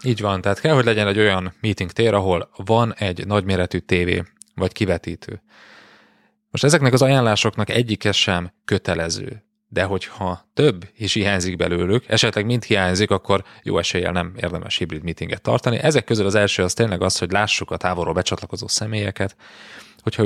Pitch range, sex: 90-110 Hz, male